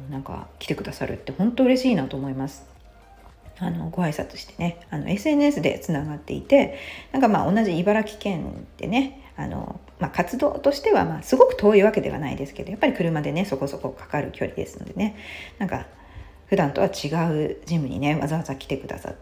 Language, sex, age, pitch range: Japanese, female, 40-59, 140-210 Hz